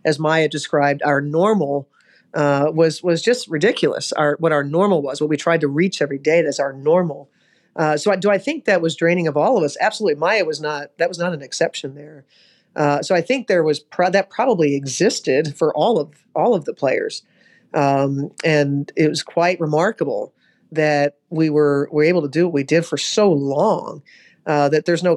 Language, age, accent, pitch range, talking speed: English, 40-59, American, 145-165 Hz, 205 wpm